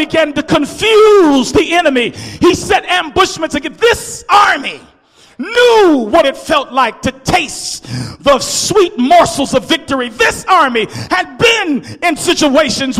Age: 40-59